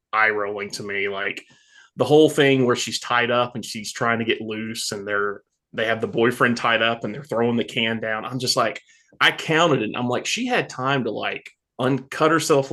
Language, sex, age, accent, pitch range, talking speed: English, male, 20-39, American, 115-145 Hz, 220 wpm